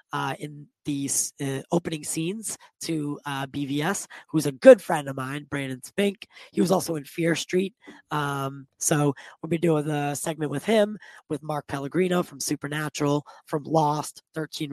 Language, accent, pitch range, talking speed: English, American, 140-160 Hz, 160 wpm